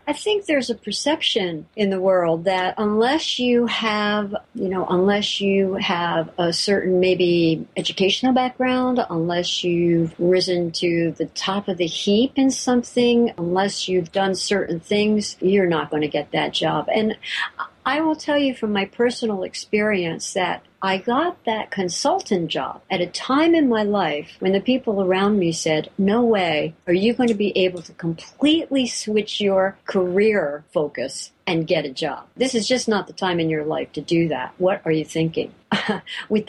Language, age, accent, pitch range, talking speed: English, 60-79, American, 170-220 Hz, 180 wpm